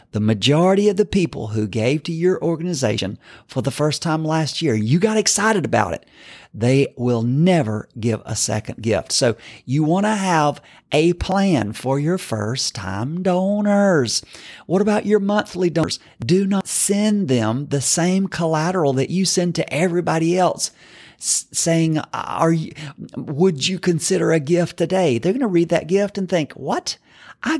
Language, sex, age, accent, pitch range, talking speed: English, male, 40-59, American, 135-190 Hz, 165 wpm